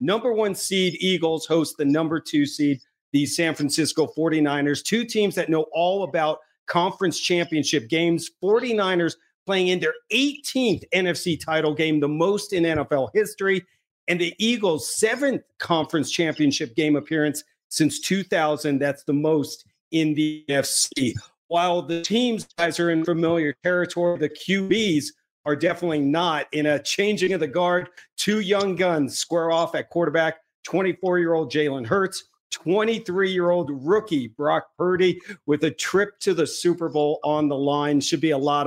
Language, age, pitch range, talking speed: English, 50-69, 150-185 Hz, 150 wpm